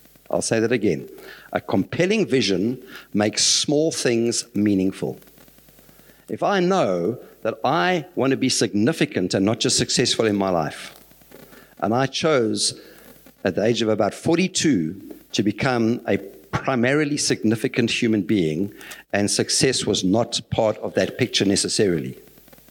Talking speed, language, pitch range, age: 135 wpm, English, 105-130 Hz, 60-79